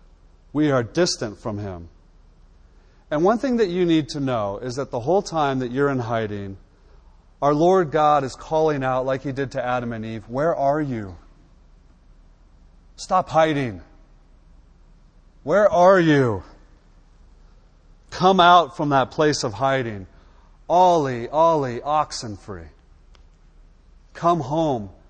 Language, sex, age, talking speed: English, male, 40-59, 135 wpm